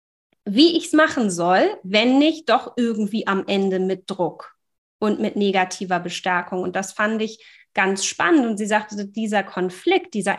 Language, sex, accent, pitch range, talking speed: German, female, German, 205-275 Hz, 170 wpm